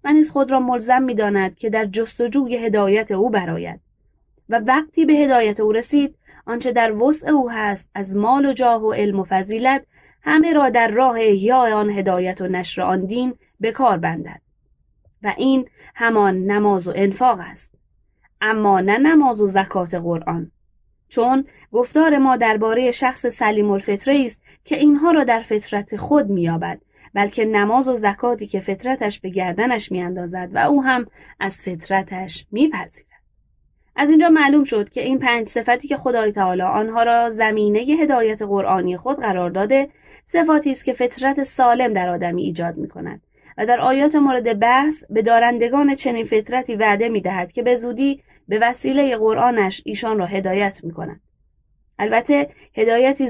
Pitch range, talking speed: 200-260 Hz, 160 wpm